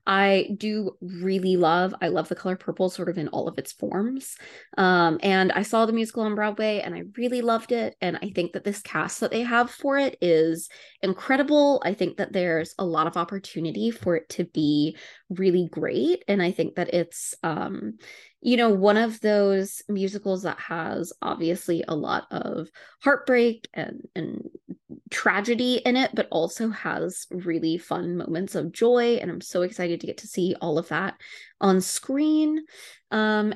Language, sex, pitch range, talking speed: English, female, 170-220 Hz, 180 wpm